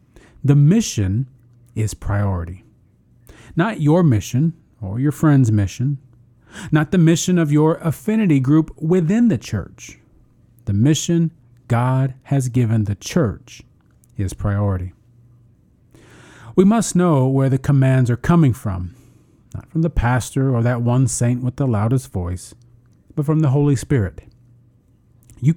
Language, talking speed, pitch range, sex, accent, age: English, 135 wpm, 115-150 Hz, male, American, 40-59